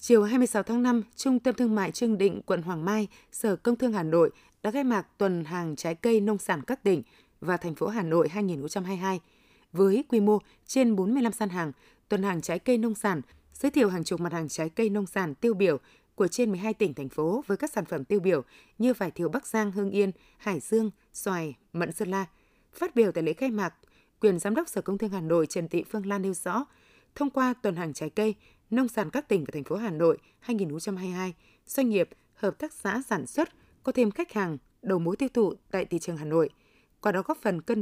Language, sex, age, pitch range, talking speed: Vietnamese, female, 20-39, 170-225 Hz, 230 wpm